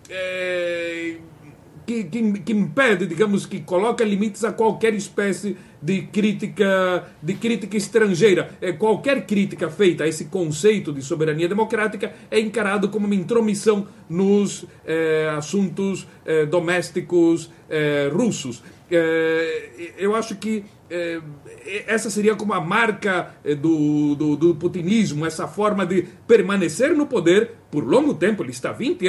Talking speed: 115 wpm